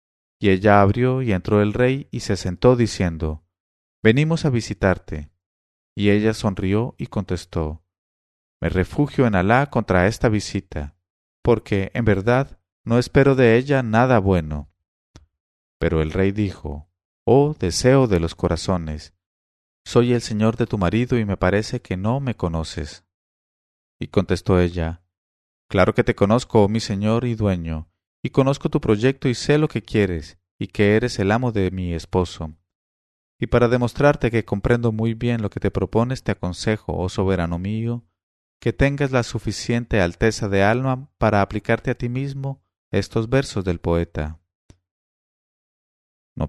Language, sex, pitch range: English, male, 85-115 Hz